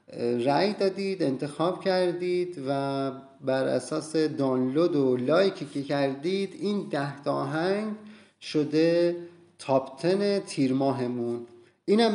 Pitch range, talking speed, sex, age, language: 130-165 Hz, 95 wpm, male, 30-49, Persian